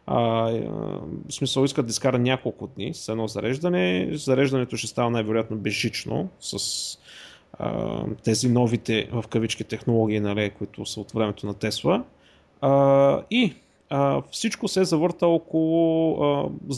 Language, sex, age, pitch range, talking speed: Bulgarian, male, 30-49, 115-155 Hz, 135 wpm